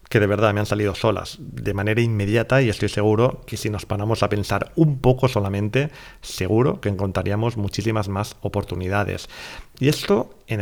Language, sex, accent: Spanish, male, Spanish